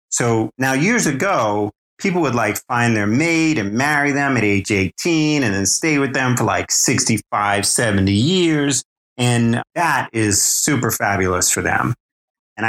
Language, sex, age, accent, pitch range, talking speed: English, male, 30-49, American, 105-120 Hz, 160 wpm